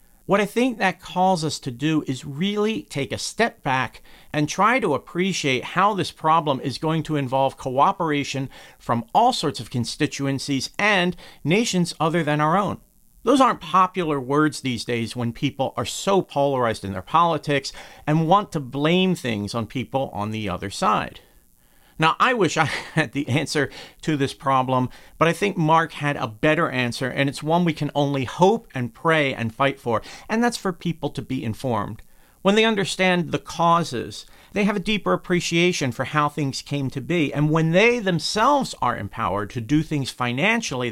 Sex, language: male, English